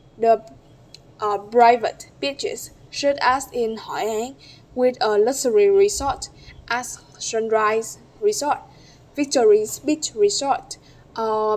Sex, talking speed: female, 105 wpm